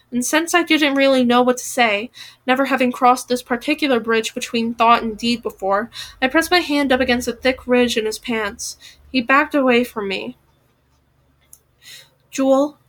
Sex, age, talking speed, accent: female, 10-29, 175 wpm, American